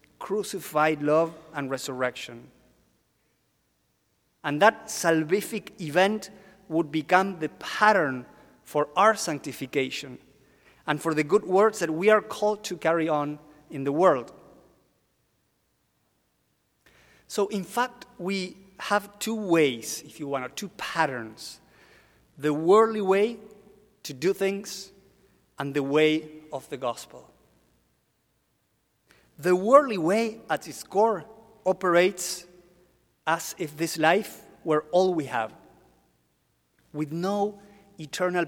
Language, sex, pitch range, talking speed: English, male, 145-195 Hz, 115 wpm